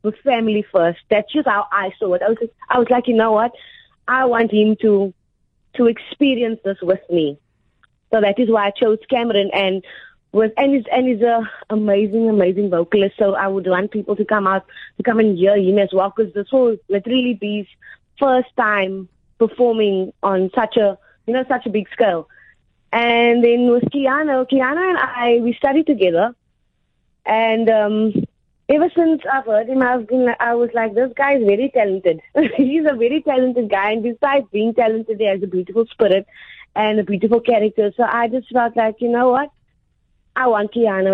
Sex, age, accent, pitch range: female, 20-39, Indian, 205-250 Hz